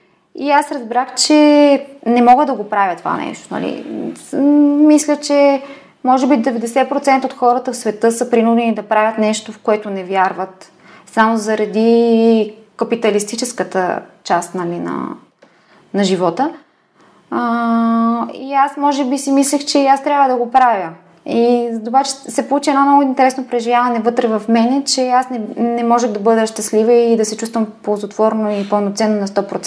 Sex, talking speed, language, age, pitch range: female, 150 wpm, Bulgarian, 20-39, 205-255 Hz